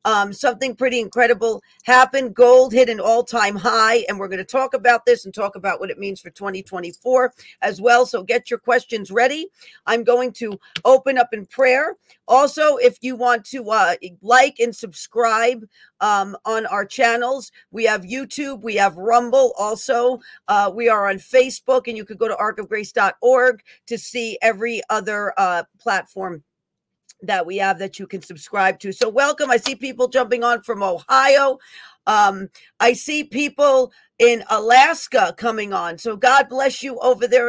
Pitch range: 210-255 Hz